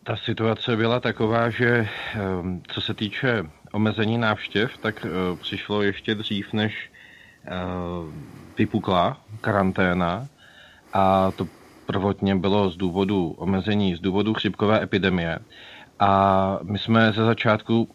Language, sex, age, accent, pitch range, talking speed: Czech, male, 30-49, native, 100-110 Hz, 110 wpm